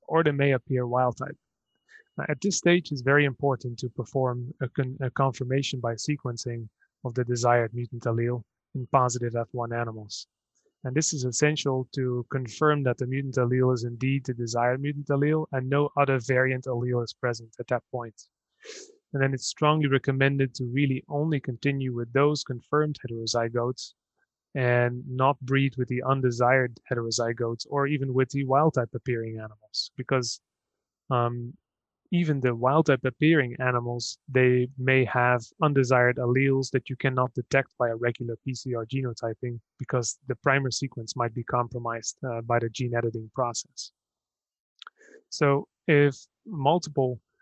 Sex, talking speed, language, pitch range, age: male, 155 wpm, English, 120-140 Hz, 20-39